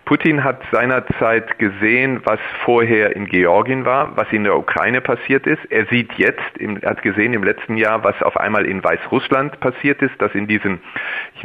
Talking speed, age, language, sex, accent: 185 wpm, 40-59, German, male, German